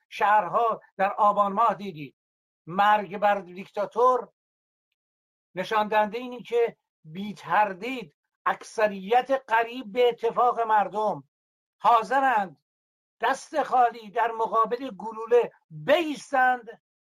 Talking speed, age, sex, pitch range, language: 85 wpm, 60-79, male, 195-250 Hz, Persian